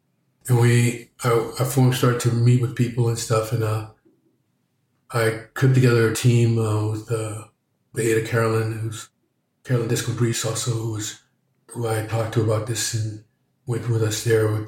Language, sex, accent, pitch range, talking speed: English, male, American, 110-120 Hz, 175 wpm